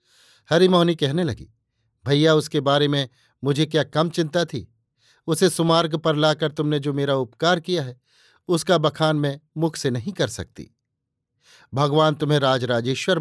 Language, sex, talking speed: Hindi, male, 150 wpm